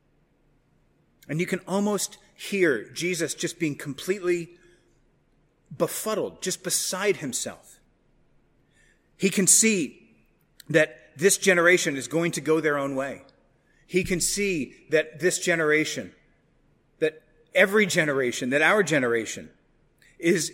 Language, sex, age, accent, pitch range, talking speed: English, male, 30-49, American, 155-190 Hz, 115 wpm